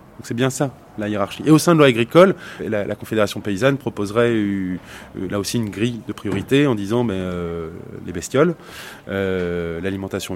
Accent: French